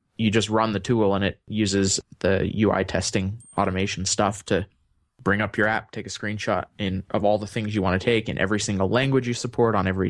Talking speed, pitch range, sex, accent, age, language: 225 wpm, 95-115 Hz, male, American, 20-39, English